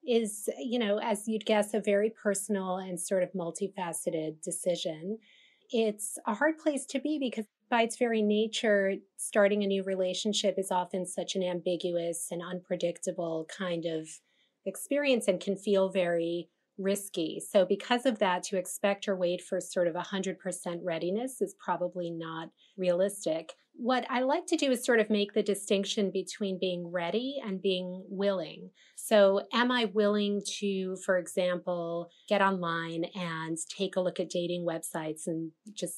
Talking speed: 160 wpm